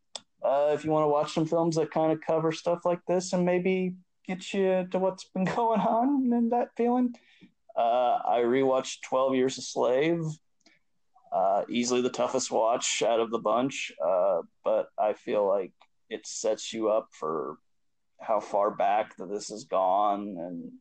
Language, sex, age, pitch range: English, male, 20-39, 125-190 Hz